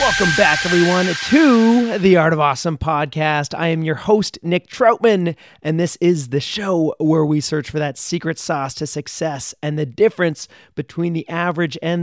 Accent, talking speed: American, 180 wpm